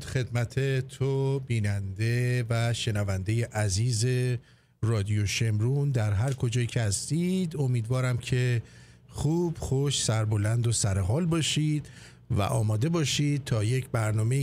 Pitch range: 120-155 Hz